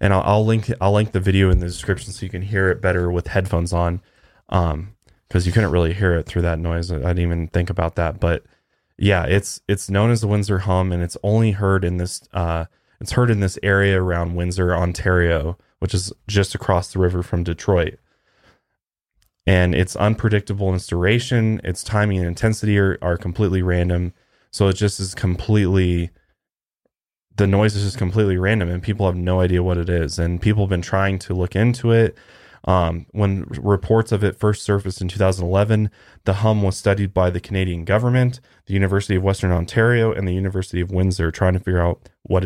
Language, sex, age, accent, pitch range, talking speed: English, male, 20-39, American, 90-100 Hz, 200 wpm